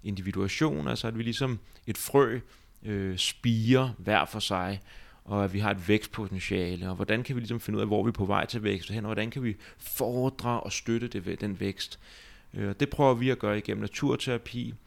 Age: 30-49